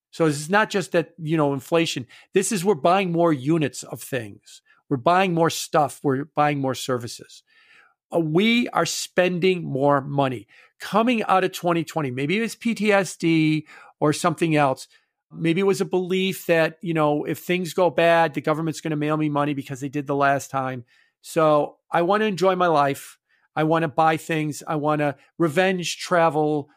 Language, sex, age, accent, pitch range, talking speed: English, male, 50-69, American, 145-185 Hz, 190 wpm